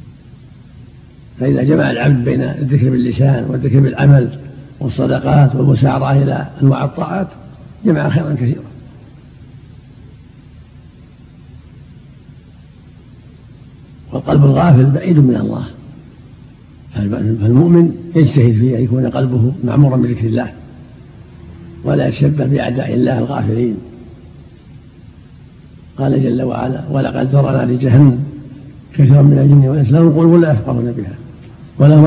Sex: male